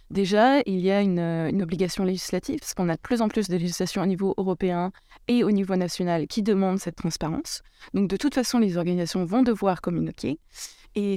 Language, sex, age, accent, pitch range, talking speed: Dutch, female, 20-39, French, 185-220 Hz, 205 wpm